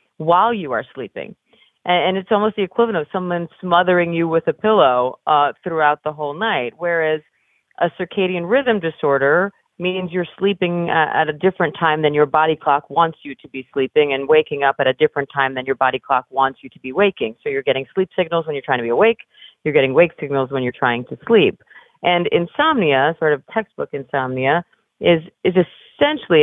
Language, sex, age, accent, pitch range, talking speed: English, female, 40-59, American, 145-190 Hz, 200 wpm